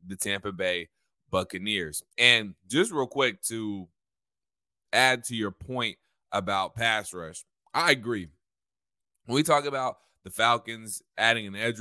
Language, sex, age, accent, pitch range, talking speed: English, male, 20-39, American, 95-120 Hz, 135 wpm